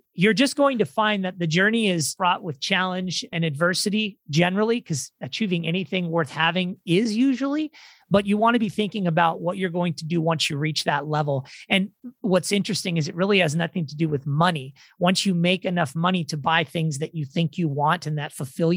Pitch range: 160-195 Hz